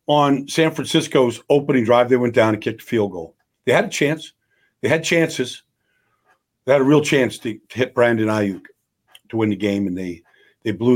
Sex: male